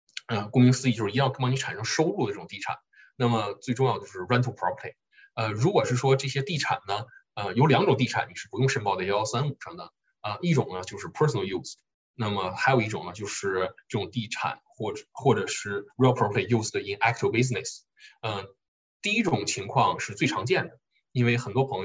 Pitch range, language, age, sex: 105-135 Hz, Chinese, 20-39, male